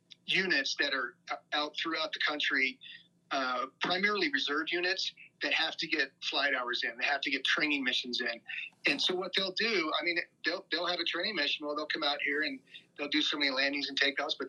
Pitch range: 140-170 Hz